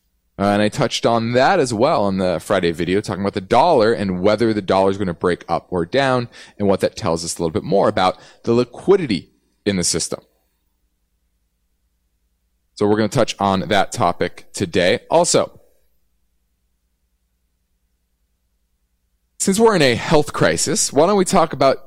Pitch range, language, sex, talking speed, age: 80-130 Hz, English, male, 175 wpm, 30-49